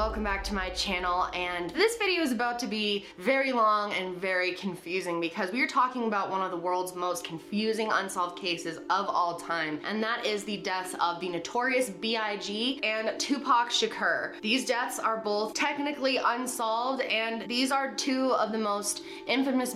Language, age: English, 20-39